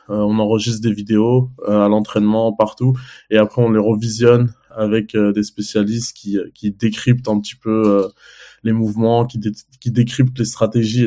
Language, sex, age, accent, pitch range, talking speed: French, male, 20-39, French, 105-125 Hz, 180 wpm